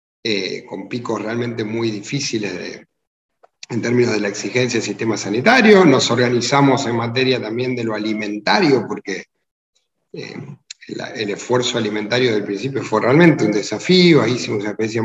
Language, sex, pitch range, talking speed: Spanish, male, 120-160 Hz, 155 wpm